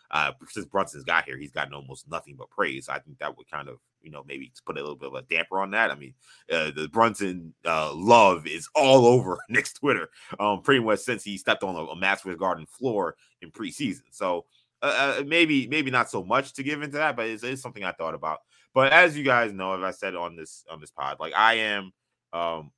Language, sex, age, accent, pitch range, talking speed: English, male, 20-39, American, 95-130 Hz, 235 wpm